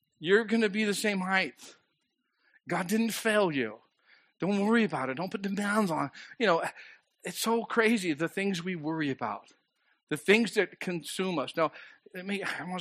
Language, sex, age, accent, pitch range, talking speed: English, male, 50-69, American, 155-215 Hz, 185 wpm